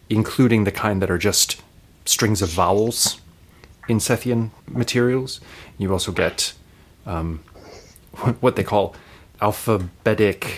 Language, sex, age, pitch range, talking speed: English, male, 30-49, 95-115 Hz, 115 wpm